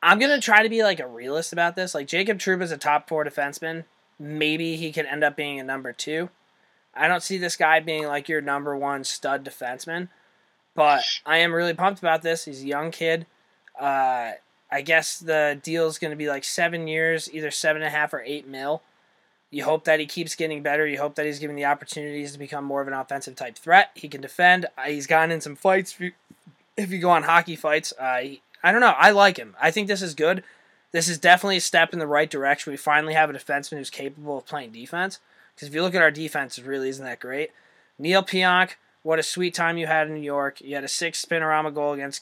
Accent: American